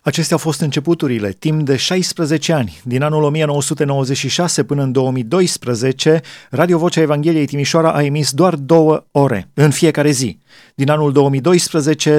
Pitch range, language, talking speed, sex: 140-165 Hz, Romanian, 145 wpm, male